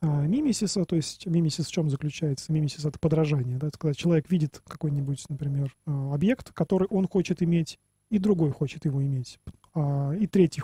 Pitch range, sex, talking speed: 155-195 Hz, male, 170 wpm